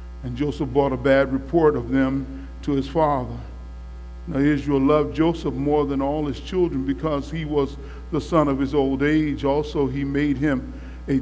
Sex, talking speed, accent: male, 180 wpm, American